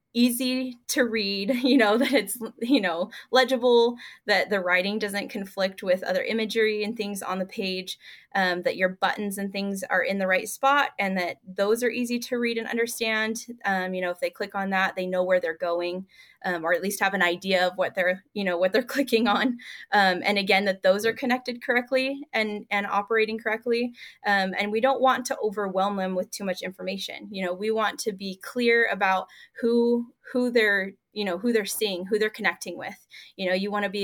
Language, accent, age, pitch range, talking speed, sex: English, American, 20-39, 190-235 Hz, 215 wpm, female